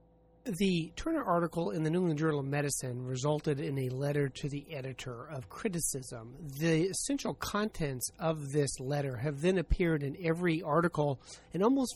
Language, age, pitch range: English, 30-49, 135-180 Hz